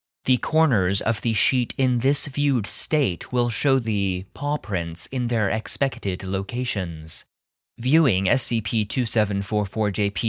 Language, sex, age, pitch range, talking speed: English, male, 20-39, 100-135 Hz, 115 wpm